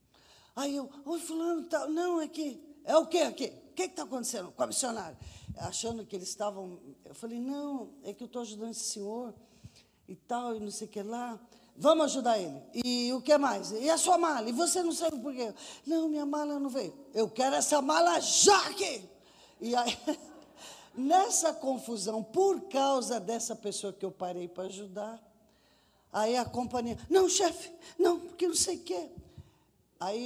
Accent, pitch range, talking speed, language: Brazilian, 220-310 Hz, 195 wpm, Portuguese